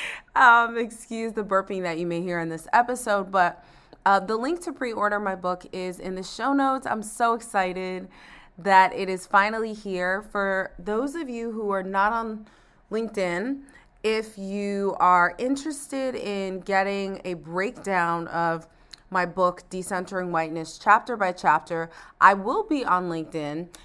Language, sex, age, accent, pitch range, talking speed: English, female, 30-49, American, 170-205 Hz, 155 wpm